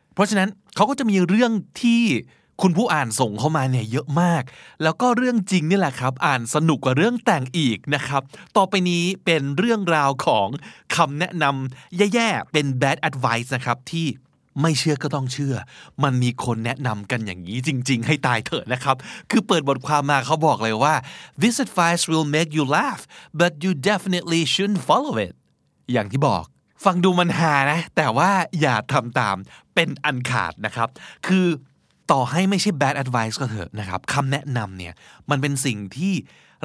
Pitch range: 130-175 Hz